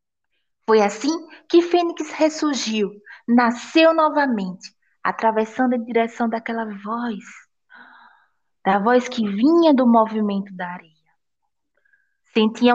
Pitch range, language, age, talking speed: 185-245 Hz, Portuguese, 20-39, 100 wpm